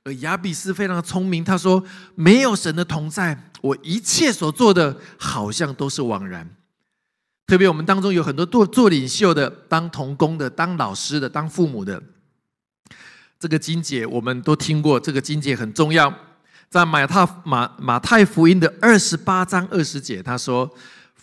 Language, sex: Chinese, male